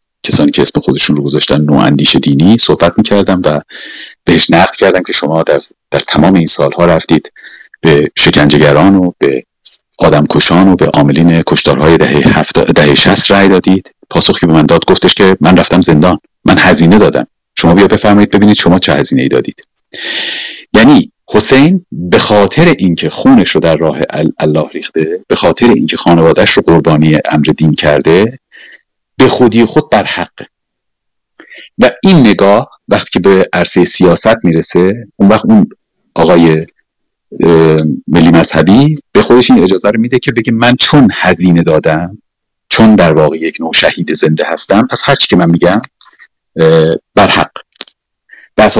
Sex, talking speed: male, 150 wpm